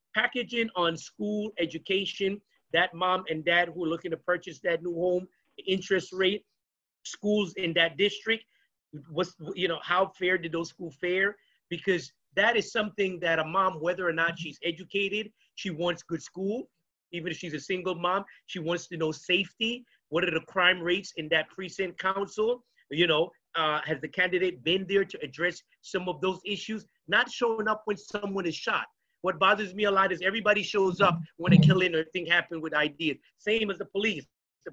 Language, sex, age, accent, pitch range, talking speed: English, male, 30-49, American, 170-205 Hz, 190 wpm